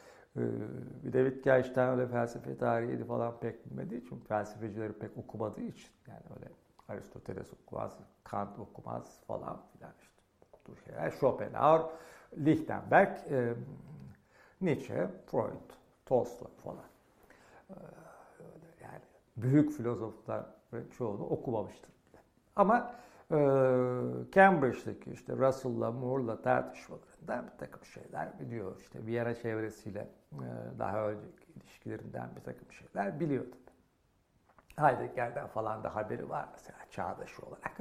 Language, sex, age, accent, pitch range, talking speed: Turkish, male, 60-79, native, 115-165 Hz, 105 wpm